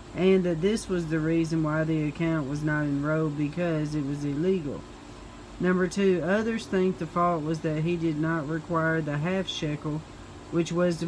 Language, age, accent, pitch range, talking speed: English, 40-59, American, 155-185 Hz, 185 wpm